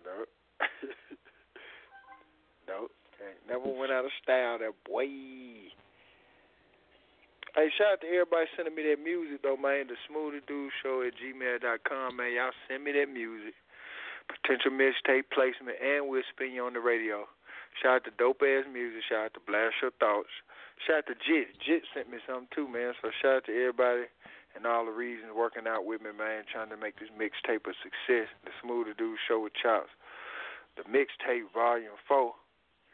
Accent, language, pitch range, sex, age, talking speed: American, English, 115-135 Hz, male, 40-59, 165 wpm